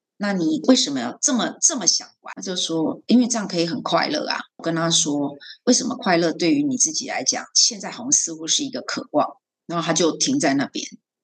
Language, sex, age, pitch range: Chinese, female, 30-49, 165-255 Hz